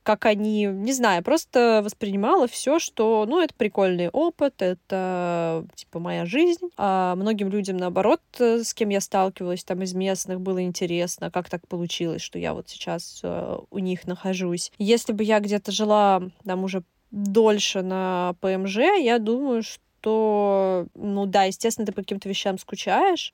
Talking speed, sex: 155 wpm, female